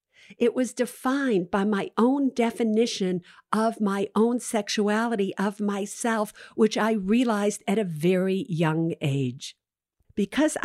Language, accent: English, American